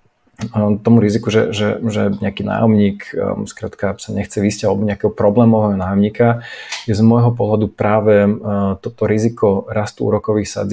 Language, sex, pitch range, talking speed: Slovak, male, 105-115 Hz, 145 wpm